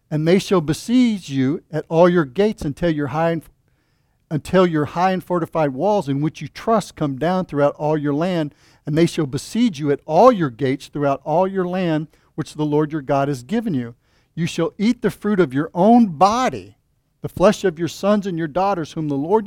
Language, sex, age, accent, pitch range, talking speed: English, male, 50-69, American, 140-190 Hz, 205 wpm